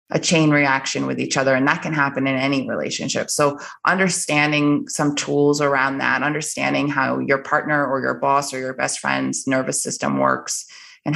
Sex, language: female, English